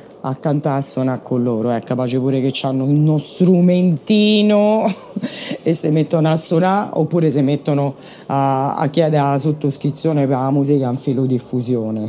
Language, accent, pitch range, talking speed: Italian, native, 145-195 Hz, 165 wpm